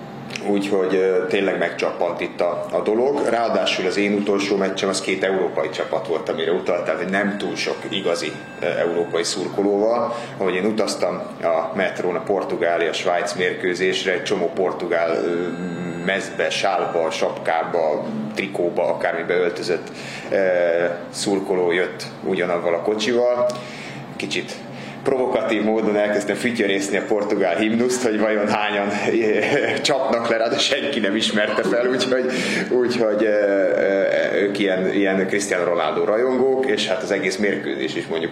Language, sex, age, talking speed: Hungarian, male, 30-49, 130 wpm